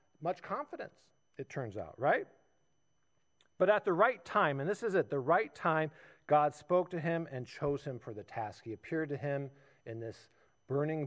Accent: American